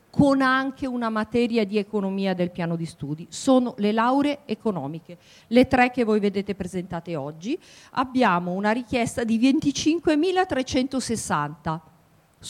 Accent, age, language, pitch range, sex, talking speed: native, 50-69, Italian, 180-245 Hz, female, 125 wpm